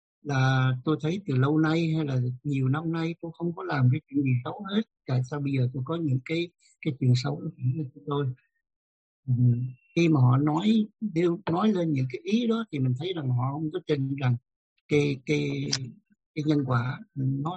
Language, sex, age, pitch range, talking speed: Vietnamese, male, 60-79, 130-165 Hz, 200 wpm